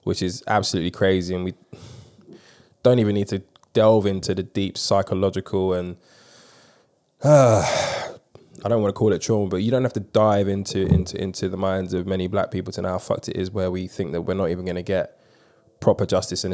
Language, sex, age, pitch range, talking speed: English, male, 20-39, 90-100 Hz, 210 wpm